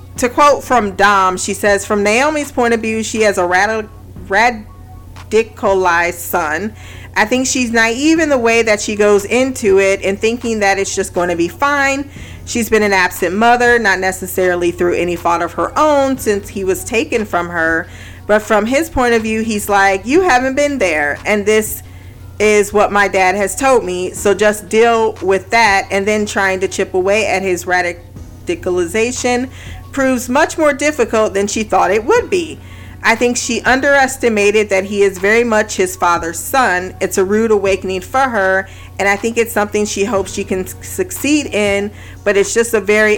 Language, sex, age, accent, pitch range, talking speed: English, female, 40-59, American, 190-235 Hz, 190 wpm